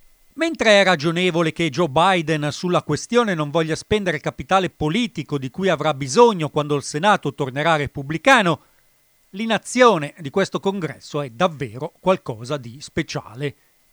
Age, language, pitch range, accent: 40-59, Italian, 150-195 Hz, native